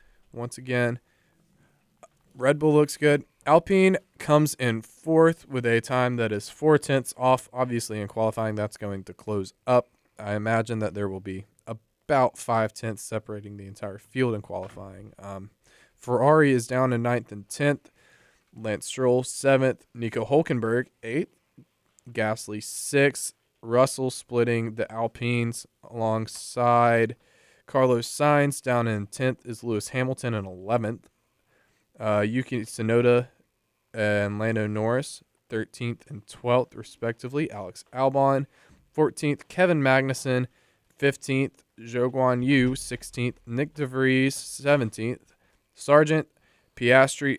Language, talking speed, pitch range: English, 120 wpm, 110-135 Hz